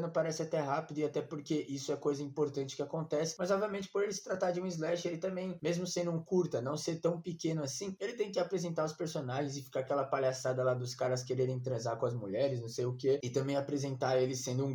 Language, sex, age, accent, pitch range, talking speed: Portuguese, male, 20-39, Brazilian, 150-185 Hz, 245 wpm